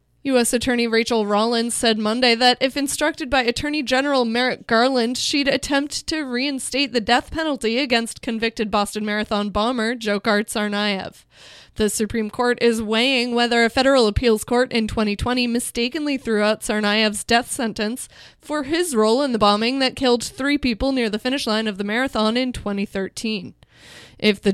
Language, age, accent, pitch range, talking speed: English, 20-39, American, 215-260 Hz, 165 wpm